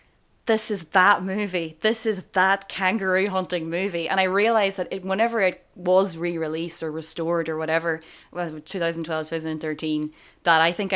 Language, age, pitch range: English, 20-39, 160-195 Hz